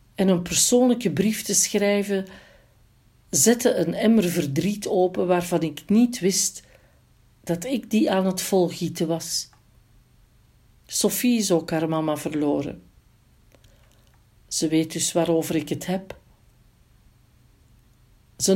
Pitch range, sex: 145-210 Hz, female